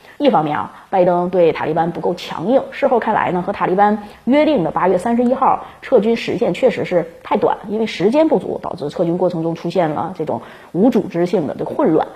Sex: female